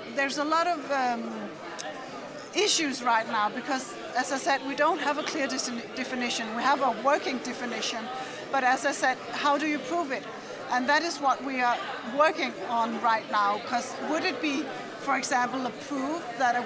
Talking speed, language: 185 wpm, English